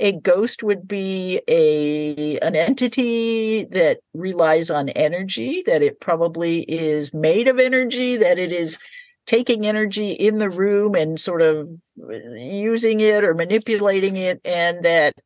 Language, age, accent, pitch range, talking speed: English, 50-69, American, 155-215 Hz, 140 wpm